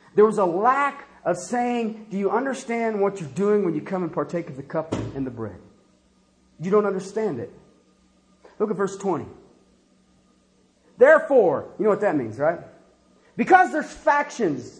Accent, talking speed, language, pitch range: American, 165 wpm, English, 215-345 Hz